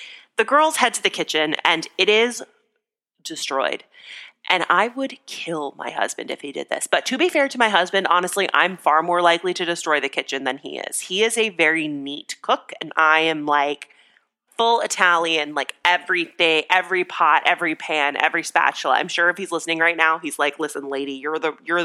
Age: 30-49